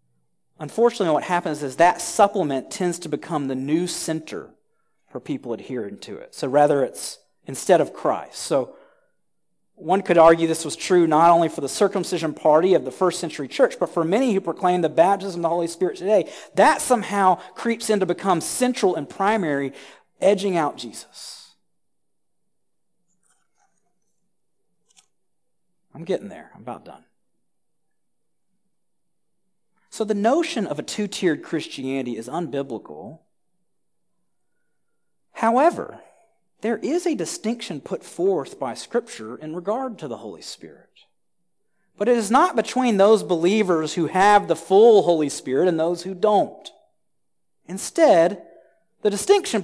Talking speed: 140 wpm